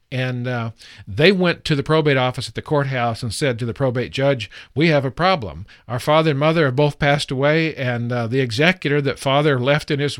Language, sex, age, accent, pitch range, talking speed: English, male, 50-69, American, 125-150 Hz, 225 wpm